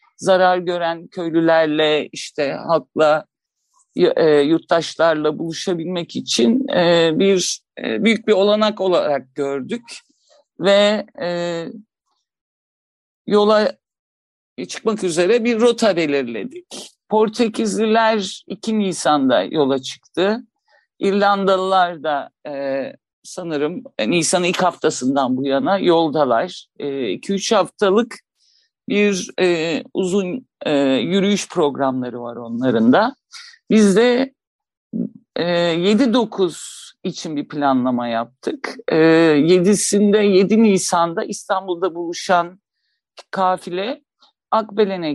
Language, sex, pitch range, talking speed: Turkish, male, 150-215 Hz, 80 wpm